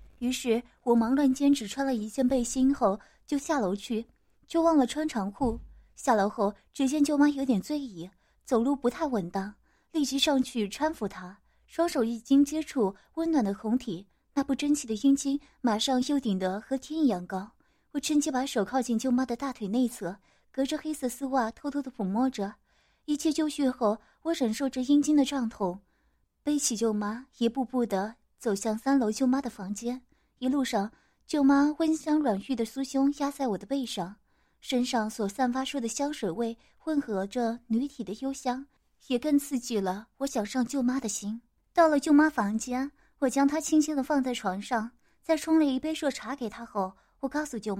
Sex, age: female, 20-39